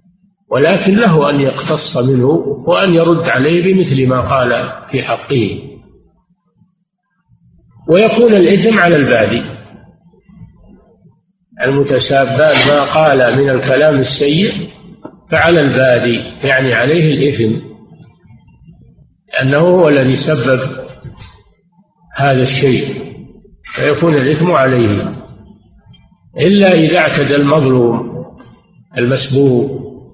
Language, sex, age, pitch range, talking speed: Arabic, male, 50-69, 130-170 Hz, 85 wpm